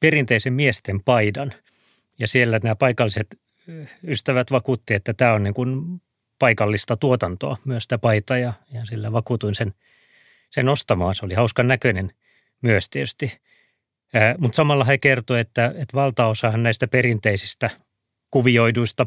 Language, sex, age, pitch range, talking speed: Finnish, male, 30-49, 110-130 Hz, 130 wpm